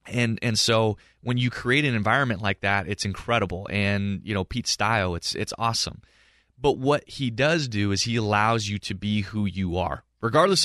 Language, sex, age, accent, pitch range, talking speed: English, male, 30-49, American, 100-120 Hz, 195 wpm